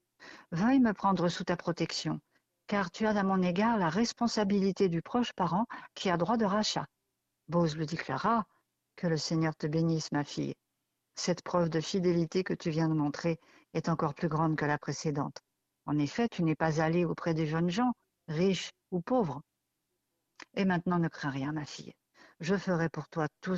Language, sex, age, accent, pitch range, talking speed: French, female, 60-79, French, 155-195 Hz, 190 wpm